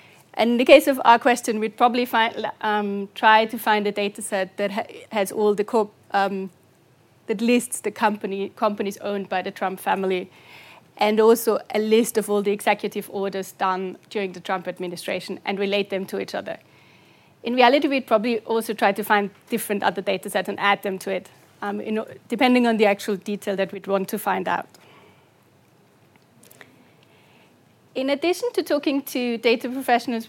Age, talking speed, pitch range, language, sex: 30-49, 180 wpm, 200-235 Hz, English, female